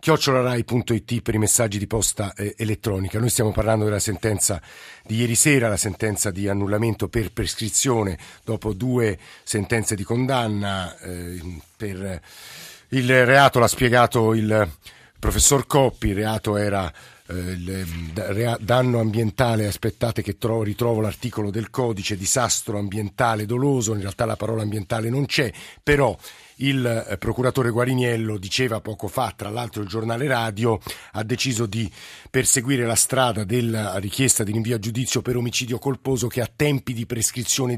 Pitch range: 105-125 Hz